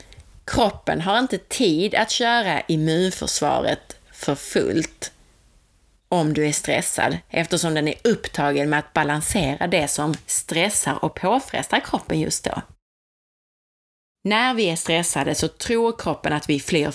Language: Swedish